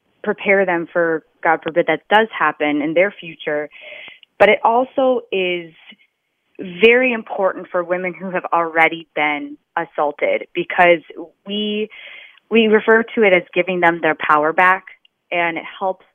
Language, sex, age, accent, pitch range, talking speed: English, female, 20-39, American, 165-195 Hz, 145 wpm